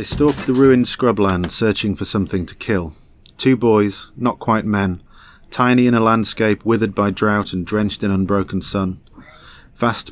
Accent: British